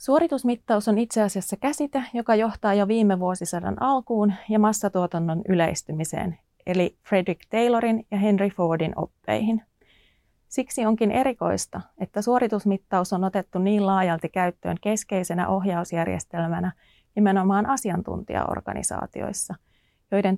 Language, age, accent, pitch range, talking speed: Finnish, 30-49, native, 185-225 Hz, 105 wpm